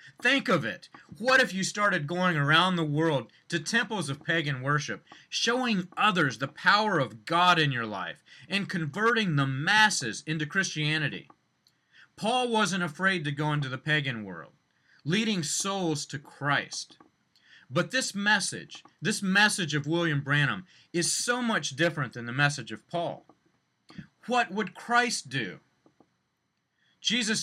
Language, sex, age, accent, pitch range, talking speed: English, male, 40-59, American, 145-195 Hz, 145 wpm